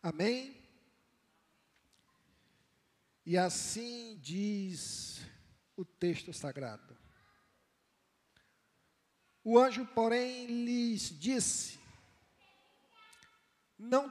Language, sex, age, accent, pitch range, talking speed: Portuguese, male, 50-69, Brazilian, 155-220 Hz, 55 wpm